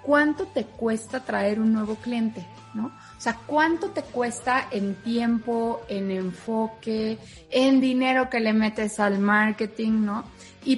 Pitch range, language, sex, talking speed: 220-265 Hz, Spanish, female, 145 wpm